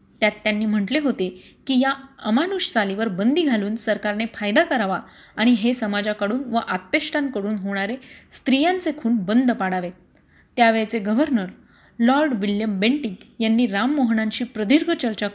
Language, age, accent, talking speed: Marathi, 30-49, native, 125 wpm